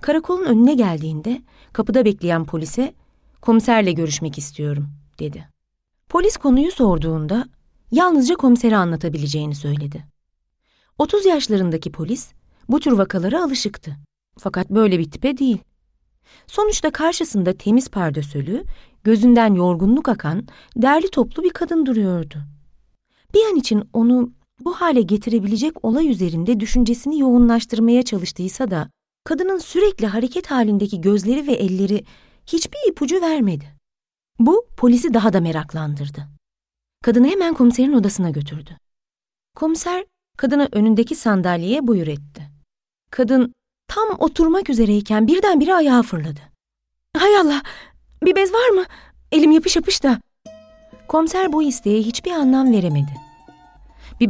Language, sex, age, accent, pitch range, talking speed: Turkish, female, 40-59, native, 175-285 Hz, 115 wpm